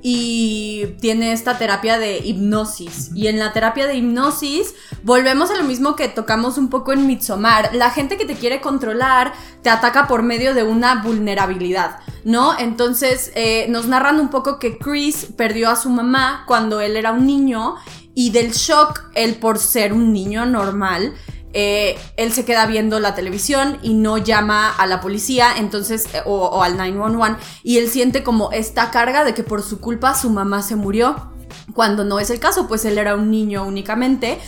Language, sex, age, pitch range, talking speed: Spanish, female, 20-39, 210-250 Hz, 185 wpm